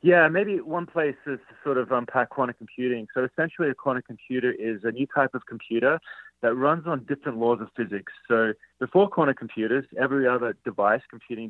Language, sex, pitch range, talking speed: English, male, 110-135 Hz, 195 wpm